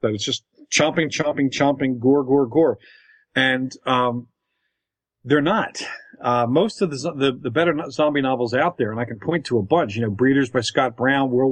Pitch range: 125-165 Hz